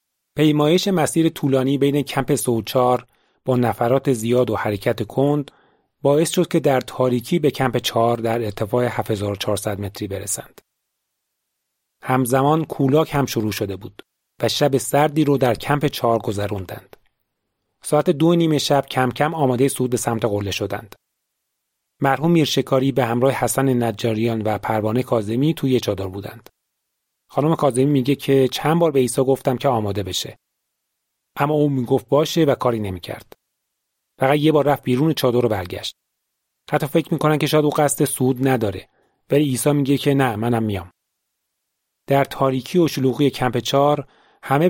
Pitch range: 115-145 Hz